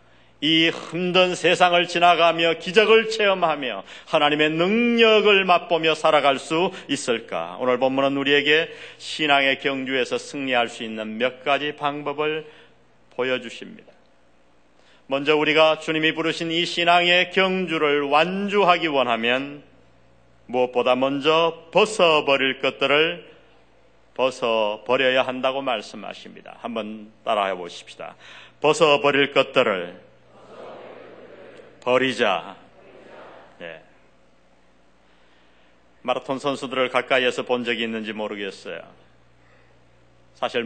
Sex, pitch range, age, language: male, 110-170 Hz, 40-59, Korean